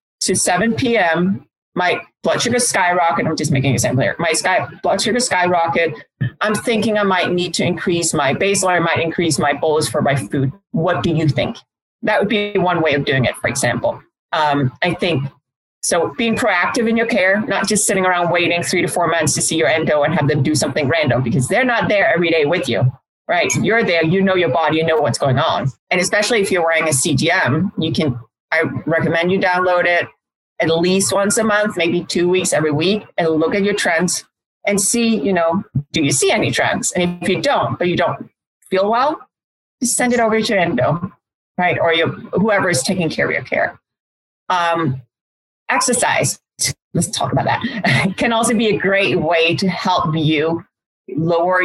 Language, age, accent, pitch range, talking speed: English, 30-49, American, 155-195 Hz, 200 wpm